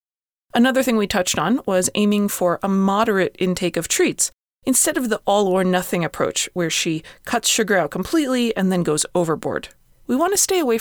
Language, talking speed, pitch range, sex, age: English, 185 wpm, 185-255 Hz, female, 30-49